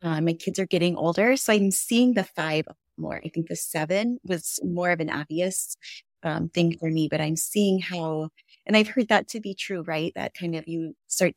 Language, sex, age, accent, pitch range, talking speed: English, female, 20-39, American, 165-205 Hz, 220 wpm